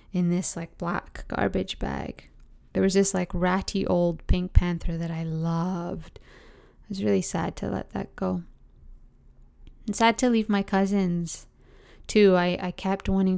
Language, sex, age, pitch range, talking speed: English, female, 20-39, 170-195 Hz, 160 wpm